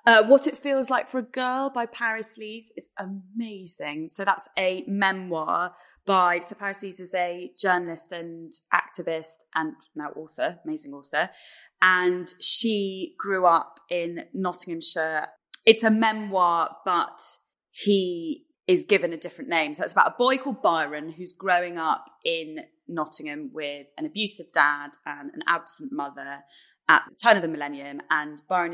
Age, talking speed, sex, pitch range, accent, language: 20-39, 155 wpm, female, 160-205 Hz, British, English